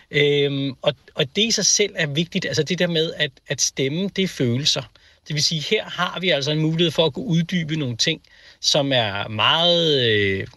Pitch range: 120-170 Hz